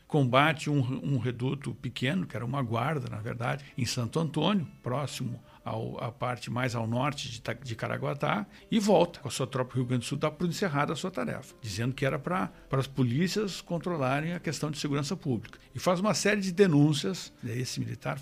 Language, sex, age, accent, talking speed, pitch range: Portuguese, male, 60-79, Brazilian, 195 wpm, 125-155 Hz